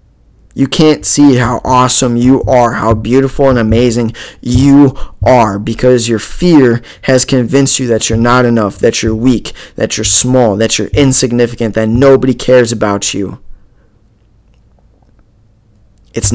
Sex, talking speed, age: male, 140 wpm, 20-39